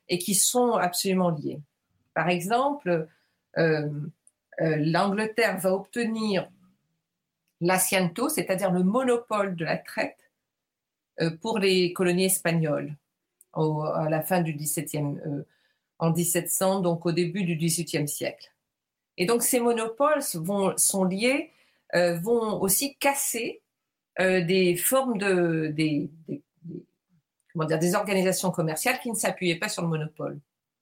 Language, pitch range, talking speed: French, 160-190 Hz, 130 wpm